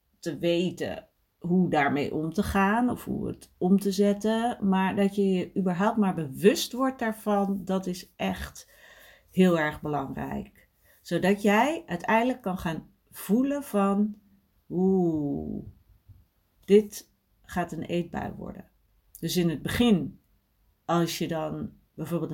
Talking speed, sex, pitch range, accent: 130 wpm, female, 155-195 Hz, Dutch